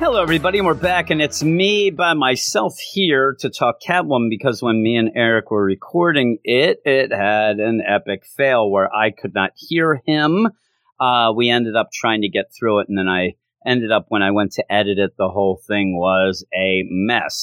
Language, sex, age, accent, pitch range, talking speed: English, male, 40-59, American, 105-145 Hz, 205 wpm